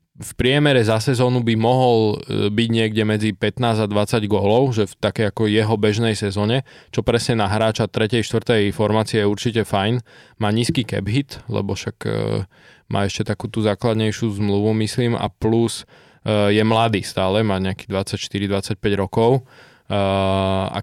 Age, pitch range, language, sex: 20-39, 105-120 Hz, Slovak, male